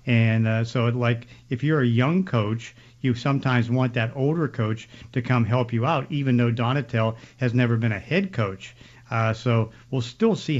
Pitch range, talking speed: 115-130 Hz, 195 wpm